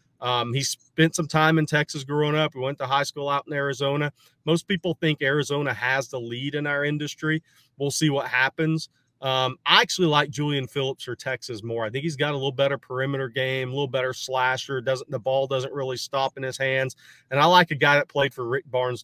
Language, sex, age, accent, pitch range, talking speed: English, male, 30-49, American, 130-155 Hz, 225 wpm